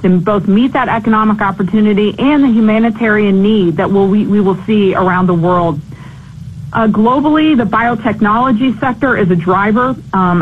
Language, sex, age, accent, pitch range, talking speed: English, female, 40-59, American, 190-225 Hz, 155 wpm